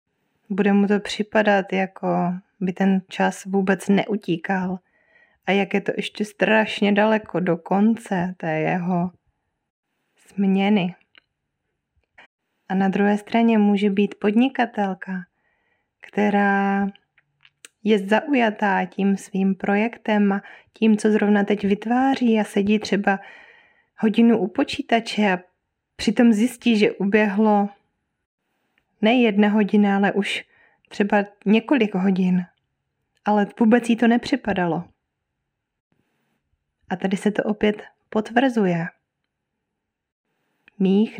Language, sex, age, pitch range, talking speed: Czech, female, 20-39, 190-220 Hz, 105 wpm